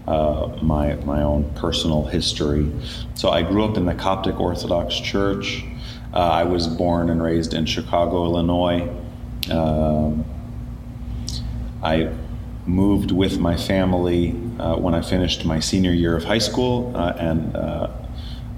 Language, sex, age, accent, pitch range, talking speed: English, male, 30-49, American, 85-115 Hz, 140 wpm